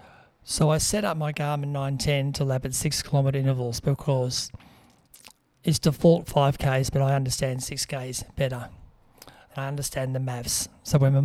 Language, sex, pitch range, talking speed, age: English, male, 130-145 Hz, 155 wpm, 40-59